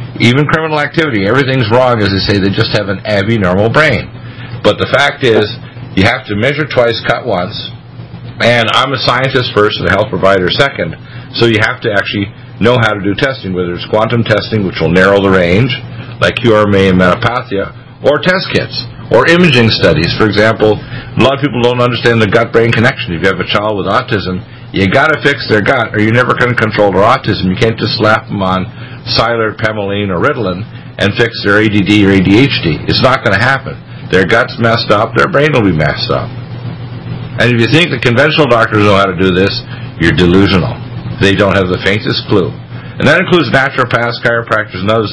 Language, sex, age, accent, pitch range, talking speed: English, male, 50-69, American, 100-125 Hz, 205 wpm